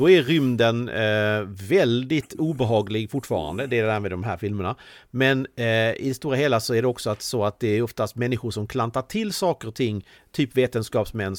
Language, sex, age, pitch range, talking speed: Swedish, male, 40-59, 105-130 Hz, 205 wpm